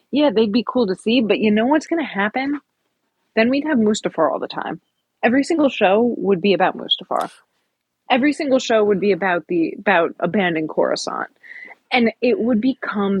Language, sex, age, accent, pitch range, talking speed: English, female, 20-39, American, 190-280 Hz, 185 wpm